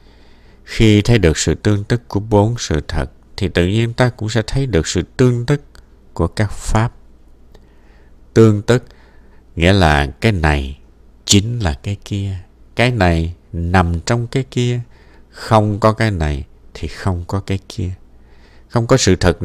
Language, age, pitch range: Vietnamese, 60-79, 70-110 Hz